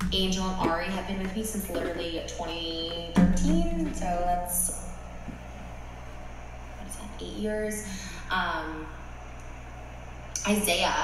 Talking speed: 105 wpm